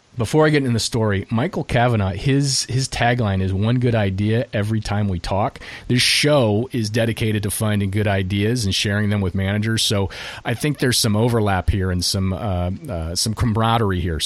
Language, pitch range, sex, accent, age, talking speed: English, 95-120 Hz, male, American, 30-49, 195 wpm